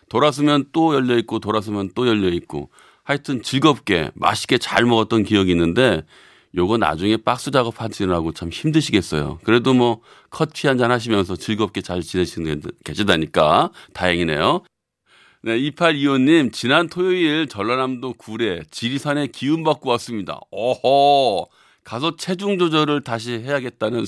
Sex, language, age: male, Korean, 40-59